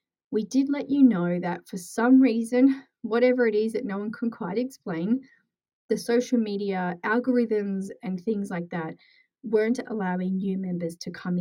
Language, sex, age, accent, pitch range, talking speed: English, female, 30-49, Australian, 190-245 Hz, 170 wpm